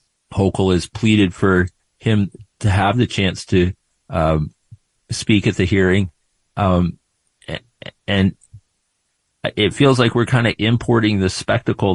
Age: 40-59